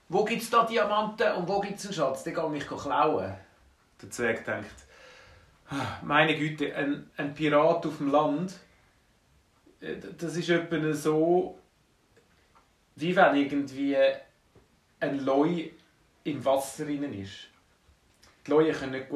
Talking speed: 130 wpm